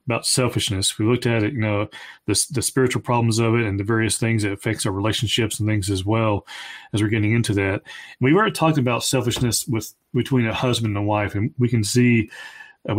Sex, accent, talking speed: male, American, 220 wpm